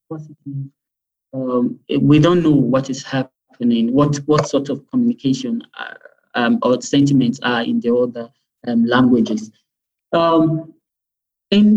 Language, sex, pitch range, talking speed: English, male, 135-195 Hz, 120 wpm